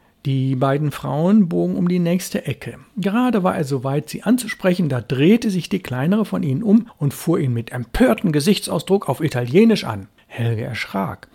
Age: 60-79